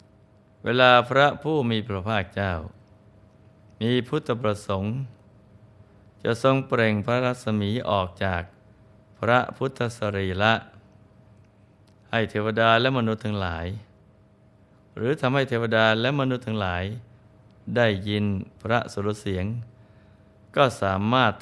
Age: 20-39